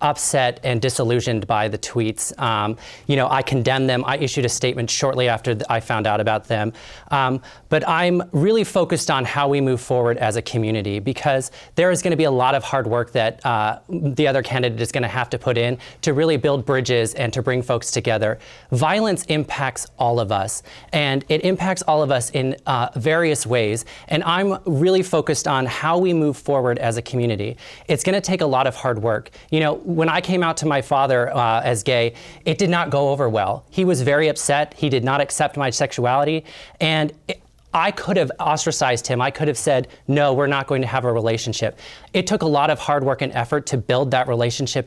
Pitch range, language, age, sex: 120-150 Hz, English, 30-49, male